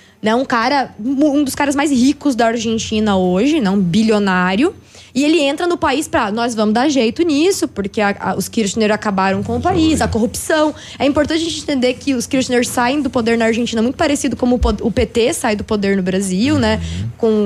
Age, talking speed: 20-39, 215 wpm